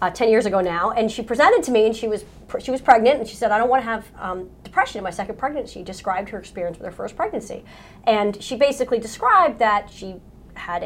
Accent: American